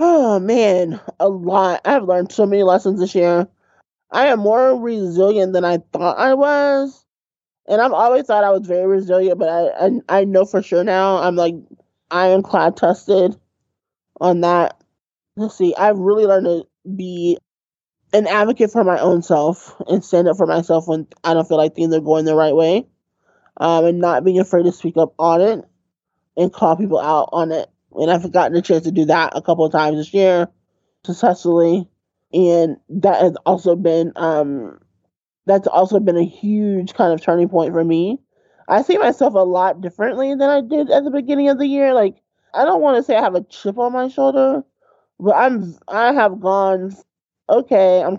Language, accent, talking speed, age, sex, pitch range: English, American, 190 wpm, 20-39, male, 170-205 Hz